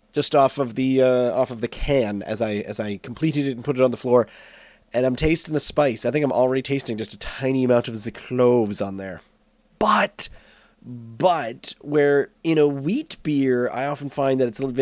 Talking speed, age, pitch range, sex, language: 220 wpm, 30-49, 120-170 Hz, male, English